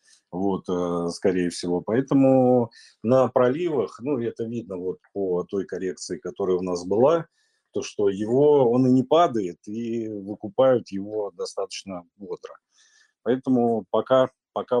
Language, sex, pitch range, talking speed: Turkish, male, 105-130 Hz, 130 wpm